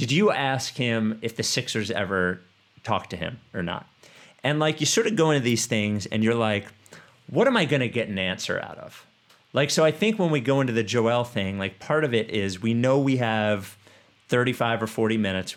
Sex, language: male, English